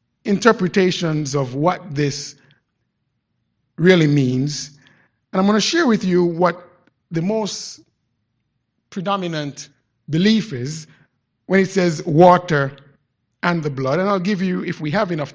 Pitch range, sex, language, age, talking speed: 135-180 Hz, male, English, 50-69, 135 wpm